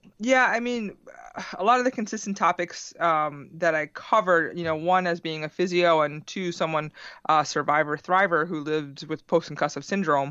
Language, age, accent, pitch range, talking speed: English, 20-39, American, 150-180 Hz, 185 wpm